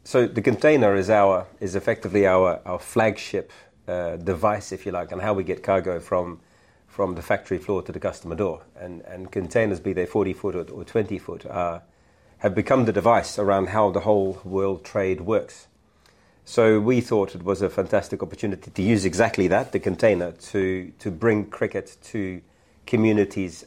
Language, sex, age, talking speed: English, male, 30-49, 180 wpm